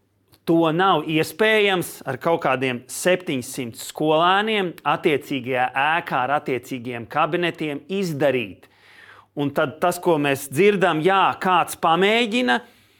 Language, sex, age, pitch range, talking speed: English, male, 40-59, 145-200 Hz, 105 wpm